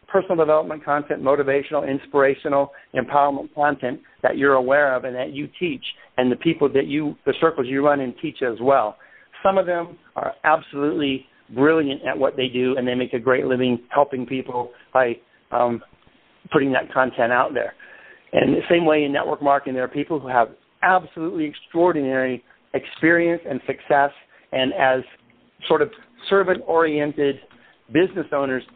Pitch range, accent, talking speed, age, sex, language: 130-155 Hz, American, 160 wpm, 50-69, male, English